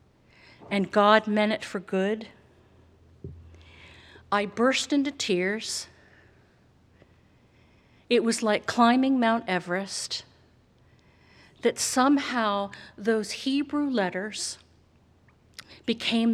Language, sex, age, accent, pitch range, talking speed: English, female, 50-69, American, 175-230 Hz, 80 wpm